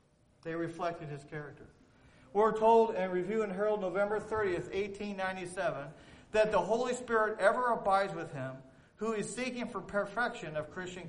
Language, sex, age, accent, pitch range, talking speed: English, male, 50-69, American, 165-210 Hz, 150 wpm